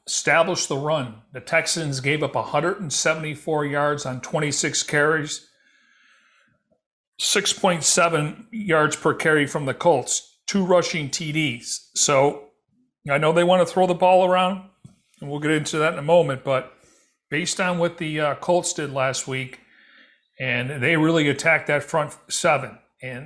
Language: English